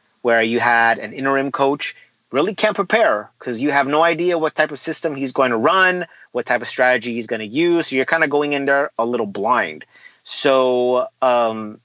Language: English